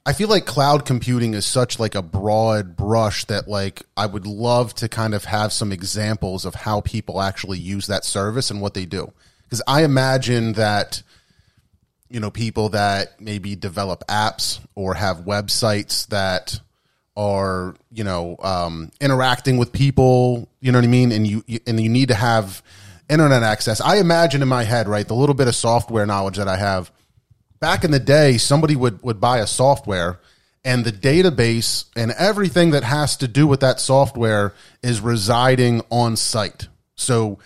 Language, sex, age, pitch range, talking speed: English, male, 30-49, 105-135 Hz, 175 wpm